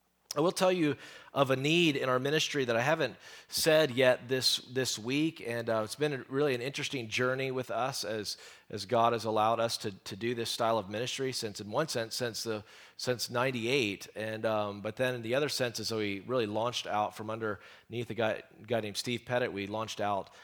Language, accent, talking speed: English, American, 225 wpm